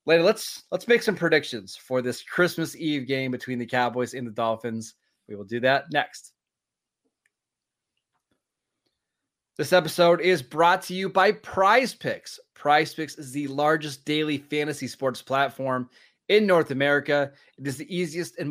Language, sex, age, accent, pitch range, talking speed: English, male, 30-49, American, 130-165 Hz, 150 wpm